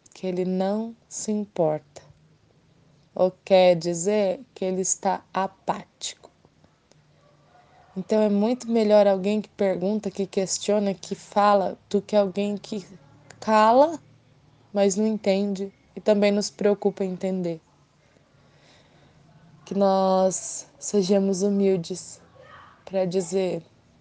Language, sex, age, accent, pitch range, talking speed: Portuguese, female, 20-39, Brazilian, 170-205 Hz, 105 wpm